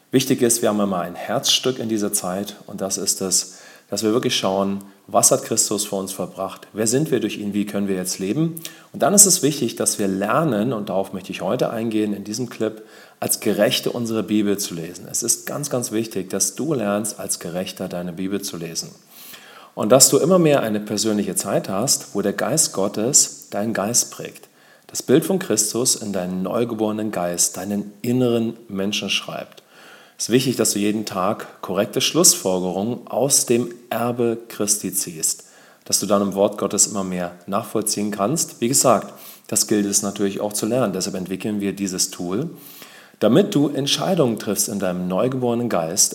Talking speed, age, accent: 190 wpm, 40-59, German